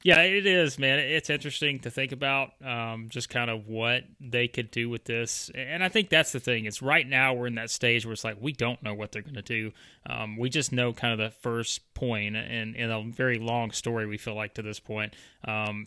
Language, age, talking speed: English, 30-49, 250 wpm